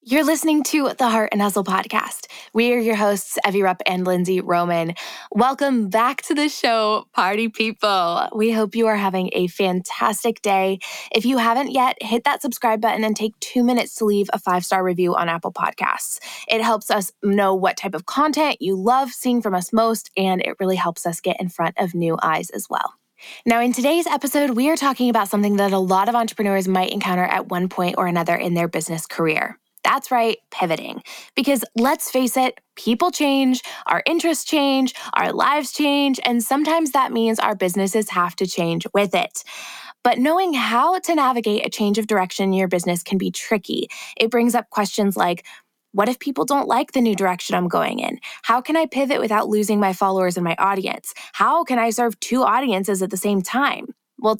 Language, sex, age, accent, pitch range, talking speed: English, female, 20-39, American, 195-265 Hz, 200 wpm